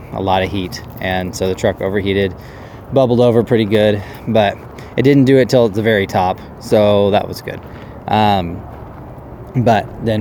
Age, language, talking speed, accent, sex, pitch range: 20-39, English, 175 wpm, American, male, 95-120 Hz